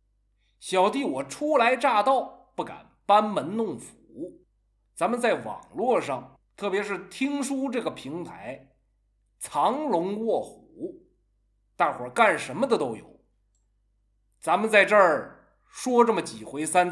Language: Chinese